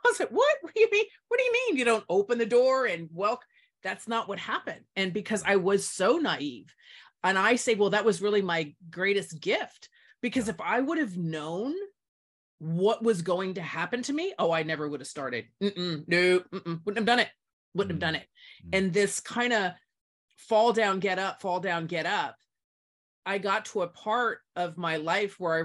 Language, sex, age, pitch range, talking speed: English, female, 30-49, 160-225 Hz, 215 wpm